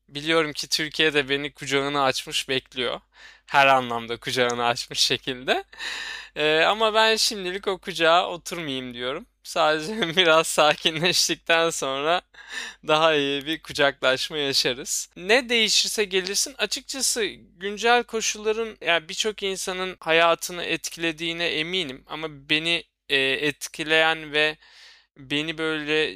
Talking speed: 110 wpm